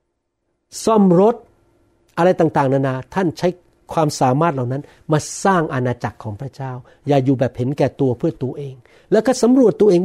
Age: 60-79